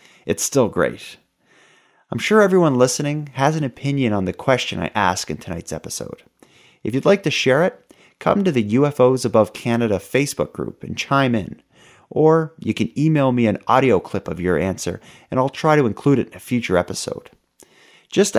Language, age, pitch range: English, 30-49, 110-150 Hz